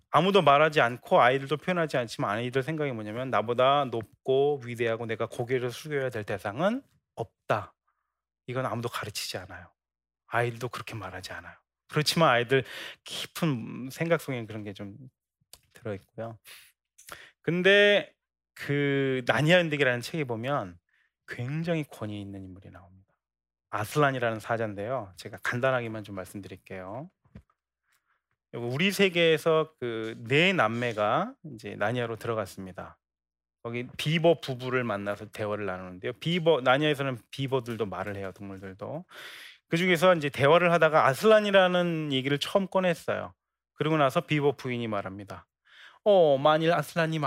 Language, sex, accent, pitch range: Korean, male, native, 110-155 Hz